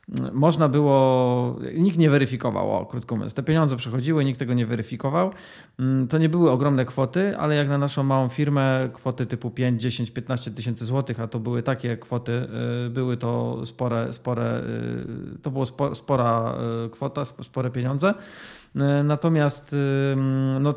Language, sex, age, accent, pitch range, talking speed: Polish, male, 30-49, native, 120-150 Hz, 145 wpm